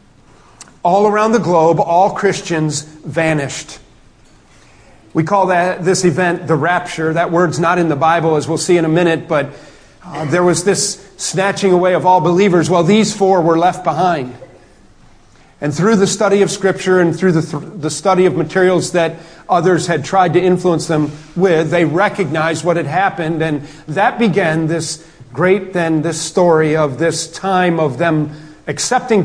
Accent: American